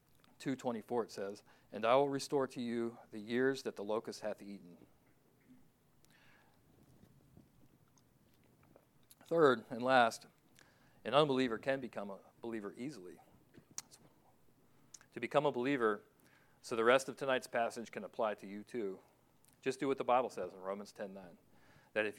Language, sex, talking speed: English, male, 140 wpm